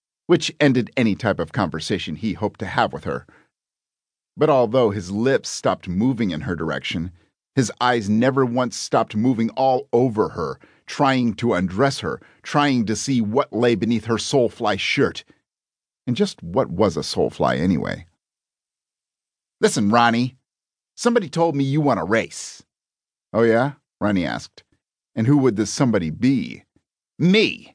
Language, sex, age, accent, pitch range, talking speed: English, male, 50-69, American, 115-155 Hz, 150 wpm